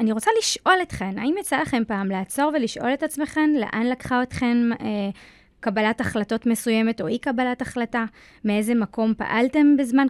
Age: 20-39